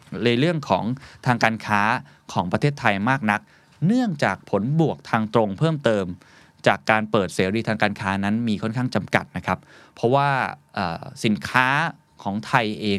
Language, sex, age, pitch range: Thai, male, 20-39, 100-130 Hz